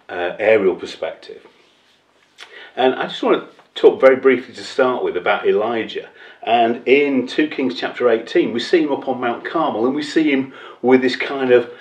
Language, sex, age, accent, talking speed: English, male, 40-59, British, 190 wpm